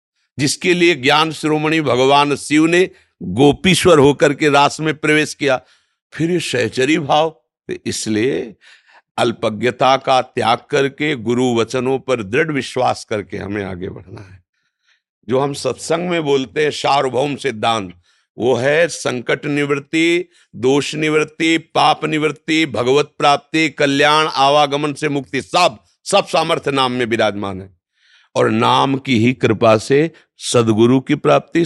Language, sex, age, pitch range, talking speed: Hindi, male, 50-69, 120-155 Hz, 135 wpm